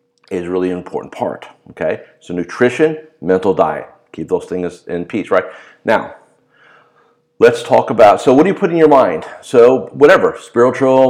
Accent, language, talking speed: American, English, 170 wpm